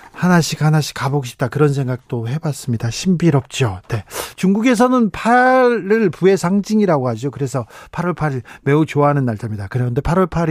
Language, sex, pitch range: Korean, male, 135-185 Hz